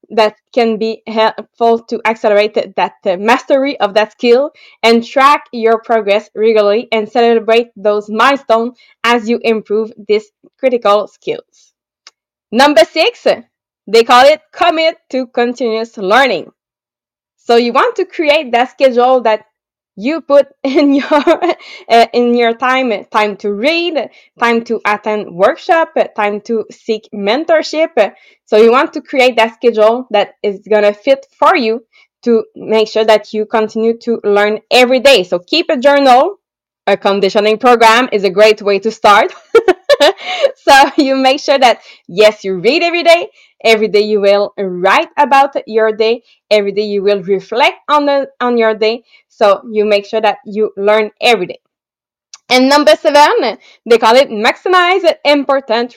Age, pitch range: 20-39, 215-280 Hz